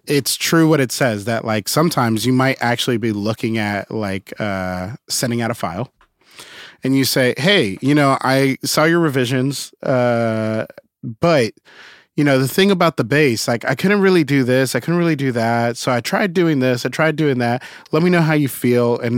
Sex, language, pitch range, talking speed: male, English, 110-140 Hz, 205 wpm